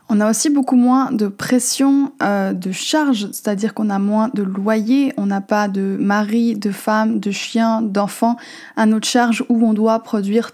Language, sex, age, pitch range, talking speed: French, female, 20-39, 210-250 Hz, 190 wpm